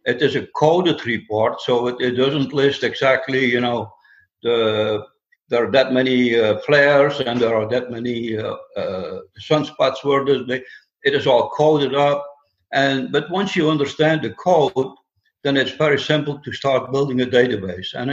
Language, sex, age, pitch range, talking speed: English, male, 60-79, 120-150 Hz, 170 wpm